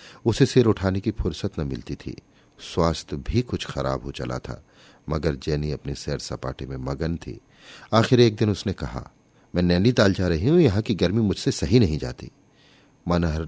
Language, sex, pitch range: Hindi, male, 75-125 Hz